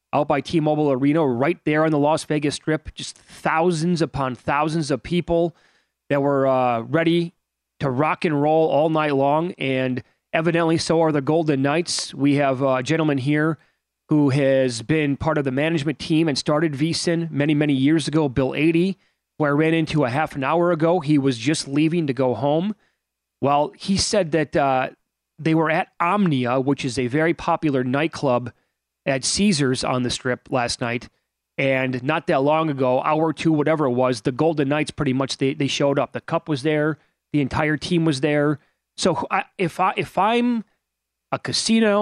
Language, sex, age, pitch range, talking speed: English, male, 30-49, 135-165 Hz, 185 wpm